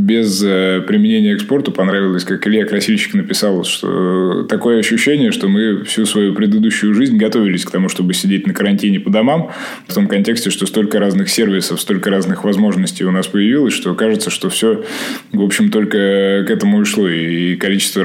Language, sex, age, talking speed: Russian, male, 20-39, 175 wpm